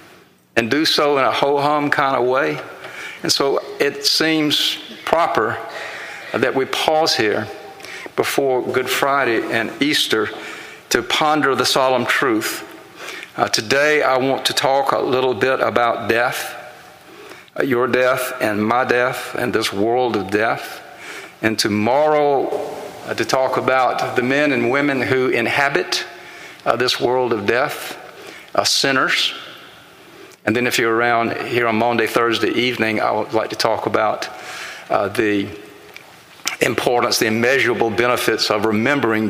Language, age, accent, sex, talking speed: English, 50-69, American, male, 140 wpm